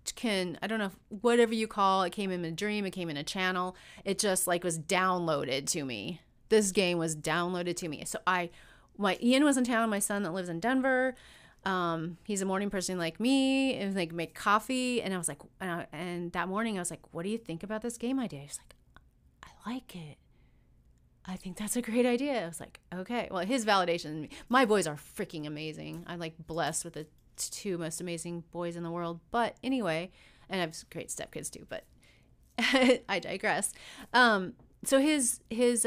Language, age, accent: English, 30-49, American